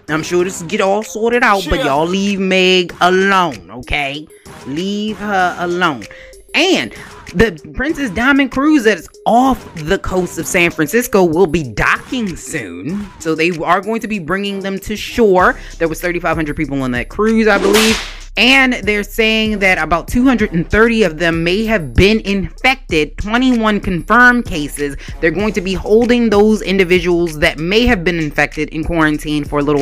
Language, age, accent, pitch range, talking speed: English, 20-39, American, 155-205 Hz, 170 wpm